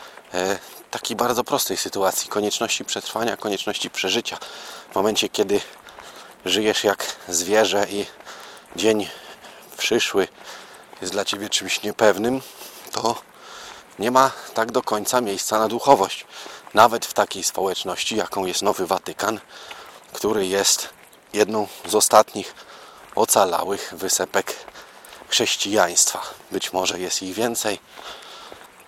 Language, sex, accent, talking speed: Polish, male, native, 110 wpm